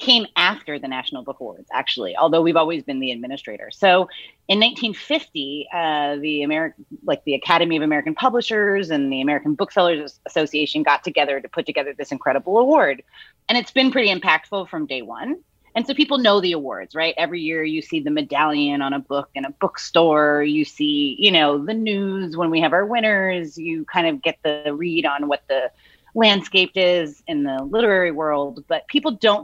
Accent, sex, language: American, female, English